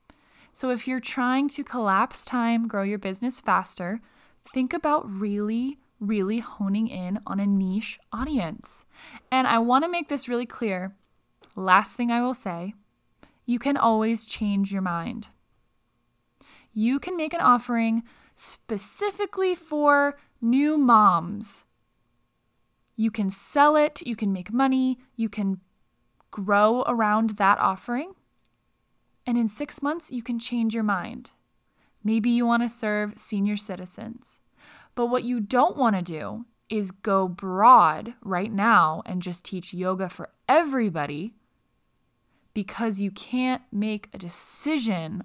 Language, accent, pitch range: English, American, 205-255 Hz